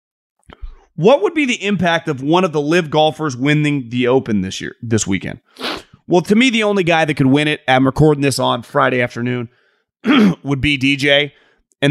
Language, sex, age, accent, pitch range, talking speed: English, male, 30-49, American, 130-180 Hz, 190 wpm